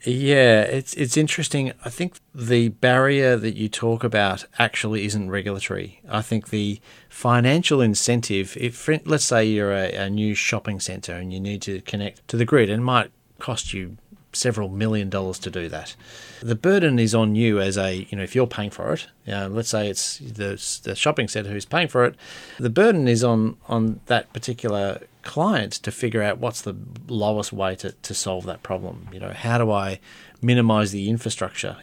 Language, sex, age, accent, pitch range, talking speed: English, male, 30-49, Australian, 100-125 Hz, 190 wpm